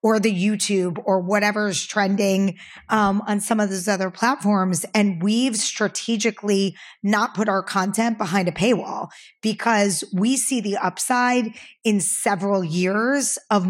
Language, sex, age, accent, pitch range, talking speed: English, female, 20-39, American, 195-230 Hz, 140 wpm